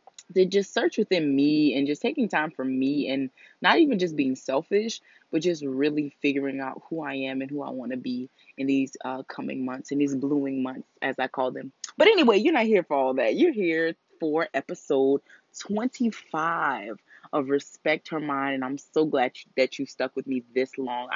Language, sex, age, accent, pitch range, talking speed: English, female, 20-39, American, 130-165 Hz, 205 wpm